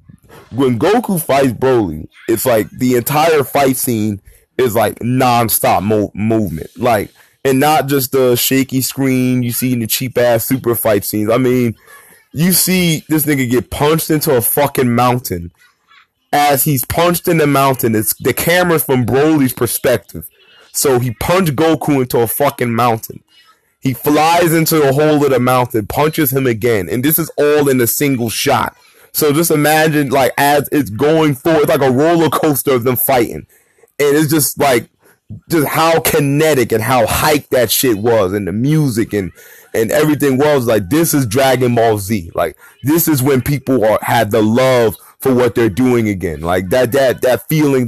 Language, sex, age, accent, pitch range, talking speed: English, male, 20-39, American, 120-150 Hz, 175 wpm